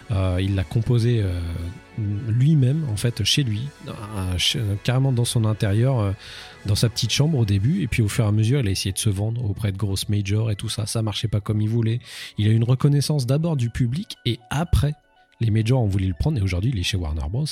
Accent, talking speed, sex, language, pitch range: French, 245 wpm, male, French, 105-140 Hz